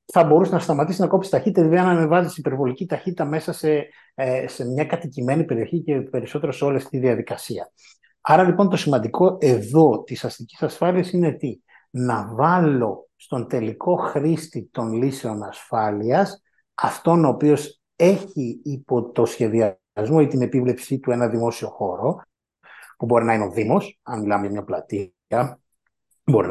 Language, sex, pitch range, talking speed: Greek, male, 120-165 Hz, 155 wpm